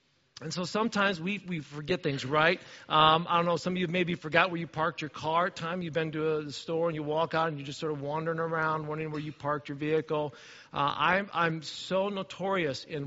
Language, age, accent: English, 40-59, American